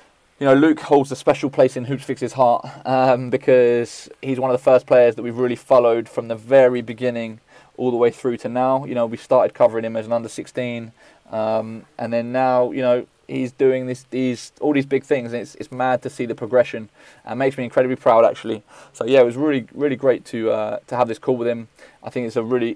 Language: English